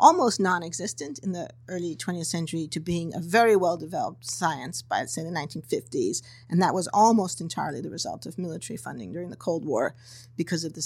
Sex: female